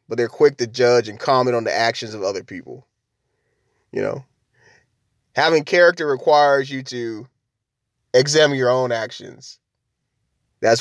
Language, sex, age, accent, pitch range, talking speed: English, male, 30-49, American, 120-150 Hz, 140 wpm